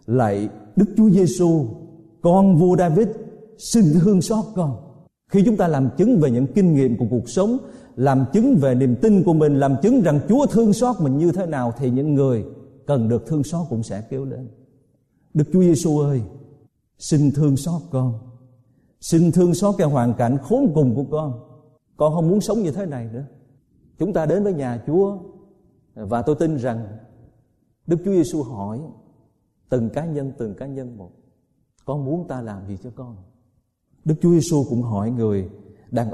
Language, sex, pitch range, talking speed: Vietnamese, male, 120-160 Hz, 185 wpm